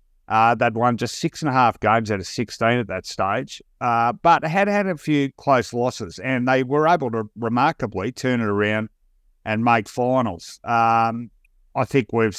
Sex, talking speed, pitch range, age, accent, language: male, 190 wpm, 105-130 Hz, 50-69, Australian, English